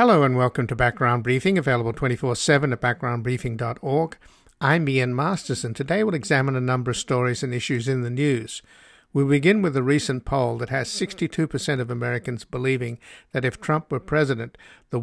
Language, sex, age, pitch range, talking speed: English, male, 60-79, 125-145 Hz, 170 wpm